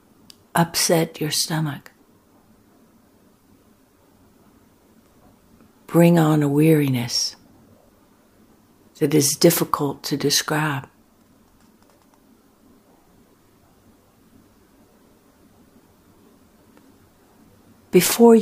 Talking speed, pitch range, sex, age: 40 wpm, 140-170 Hz, female, 60-79